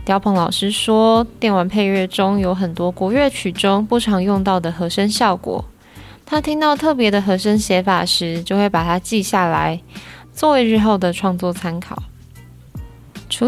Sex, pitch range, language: female, 190-225 Hz, Chinese